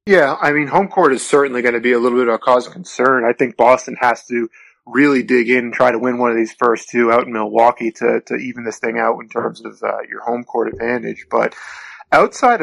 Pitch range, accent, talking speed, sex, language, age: 120-140 Hz, American, 255 wpm, male, English, 20-39